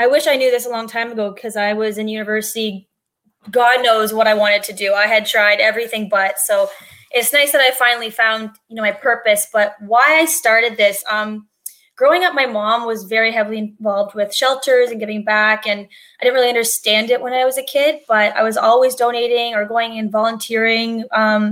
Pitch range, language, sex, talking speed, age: 210-245 Hz, English, female, 215 wpm, 20-39